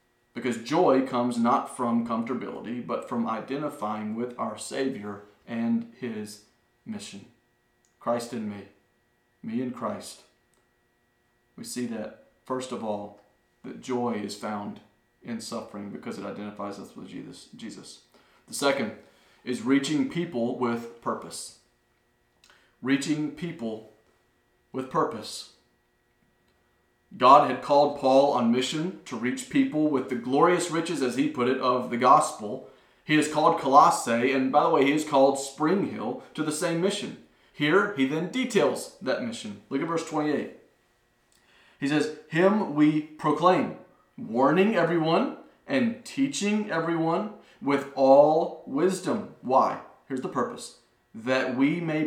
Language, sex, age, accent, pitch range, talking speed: English, male, 40-59, American, 120-160 Hz, 135 wpm